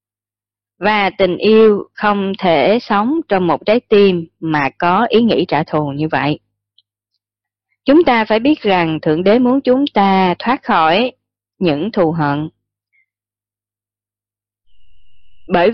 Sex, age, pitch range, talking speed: female, 20-39, 140-215 Hz, 130 wpm